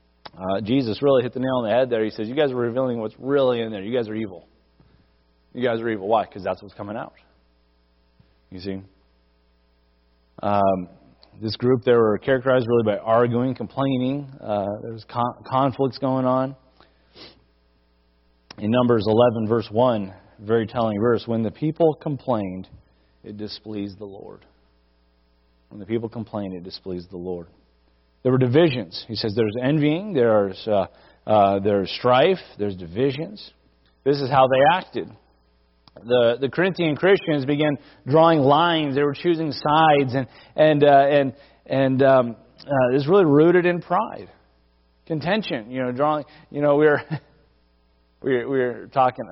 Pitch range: 95-140 Hz